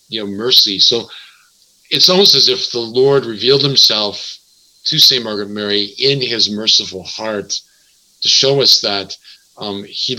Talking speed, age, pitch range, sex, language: 155 wpm, 50-69, 100-125 Hz, male, English